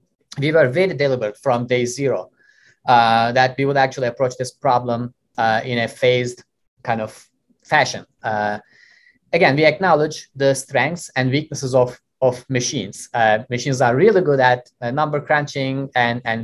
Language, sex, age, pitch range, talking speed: English, male, 20-39, 120-150 Hz, 160 wpm